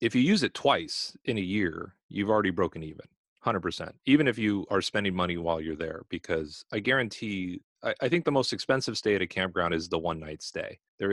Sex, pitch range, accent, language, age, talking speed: male, 85-120 Hz, American, English, 30-49, 220 wpm